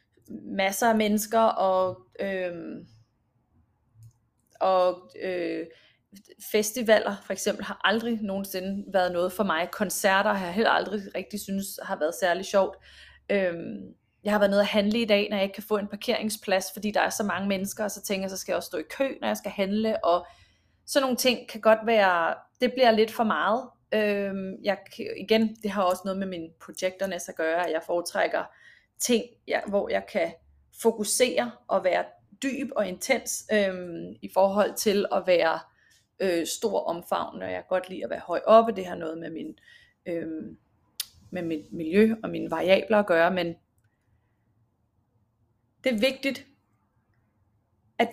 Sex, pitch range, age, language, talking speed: female, 170-220 Hz, 30-49, Danish, 175 wpm